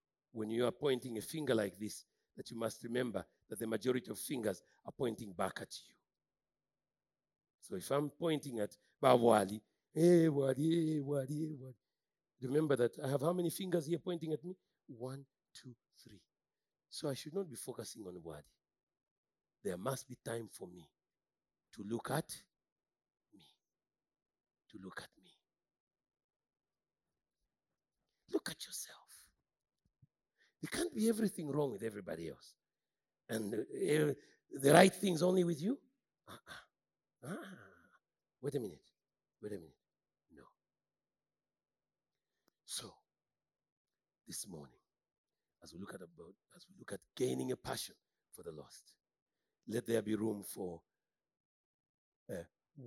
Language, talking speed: English, 140 wpm